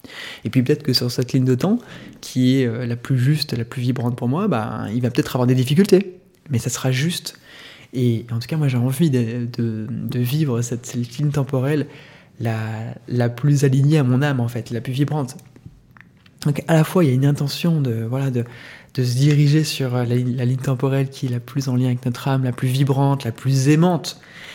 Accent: French